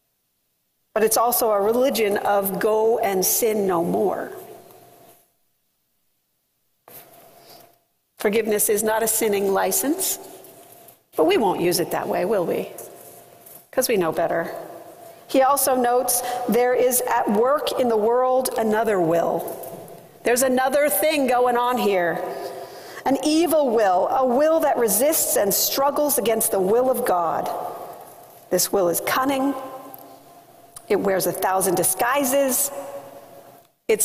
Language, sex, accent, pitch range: English, female, American, 200-290 Hz